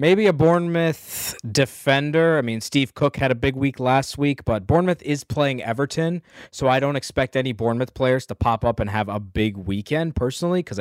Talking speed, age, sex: 200 wpm, 20-39, male